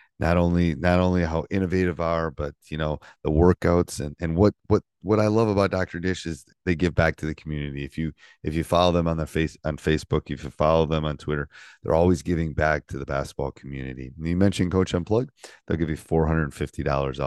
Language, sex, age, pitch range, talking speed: English, male, 30-49, 75-90 Hz, 220 wpm